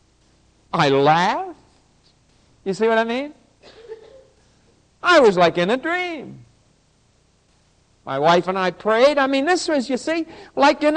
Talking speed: 140 wpm